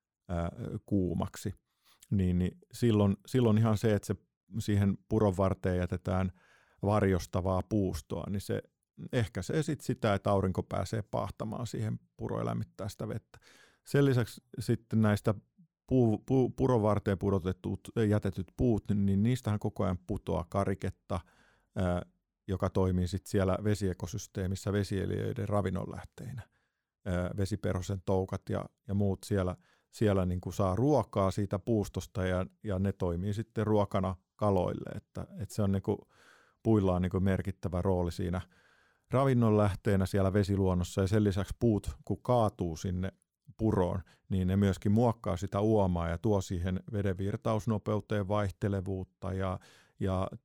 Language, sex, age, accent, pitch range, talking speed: Finnish, male, 50-69, native, 95-110 Hz, 125 wpm